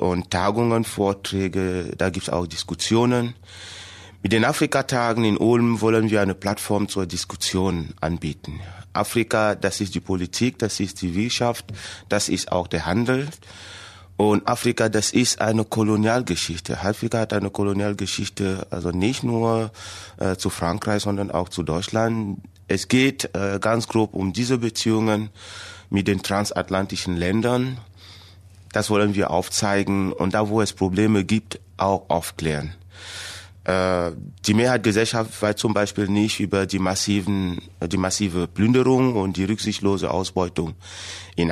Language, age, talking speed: German, 30-49, 140 wpm